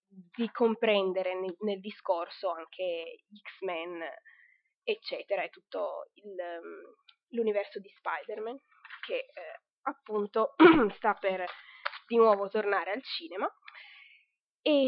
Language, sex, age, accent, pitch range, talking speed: Italian, female, 20-39, native, 195-250 Hz, 100 wpm